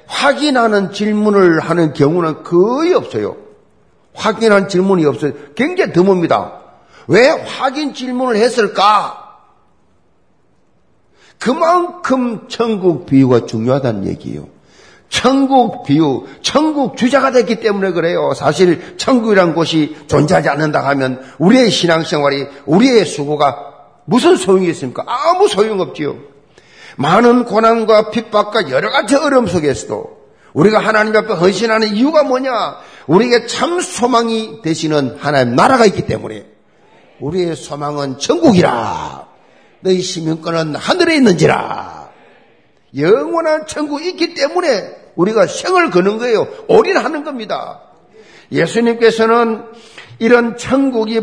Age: 50-69